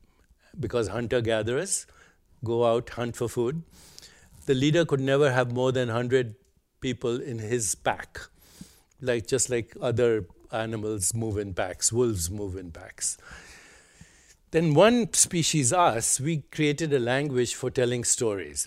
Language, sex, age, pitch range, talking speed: English, male, 60-79, 110-140 Hz, 135 wpm